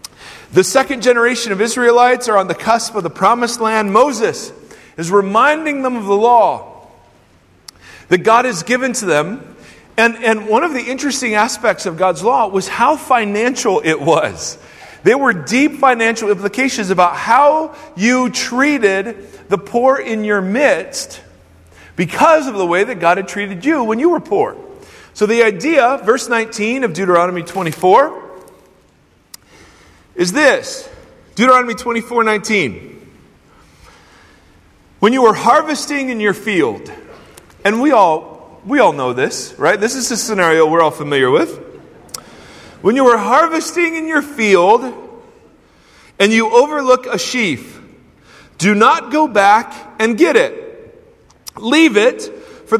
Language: English